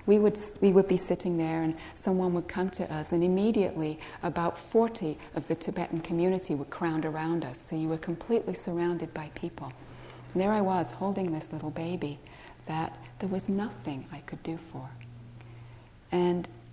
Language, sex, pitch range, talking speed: English, female, 145-190 Hz, 175 wpm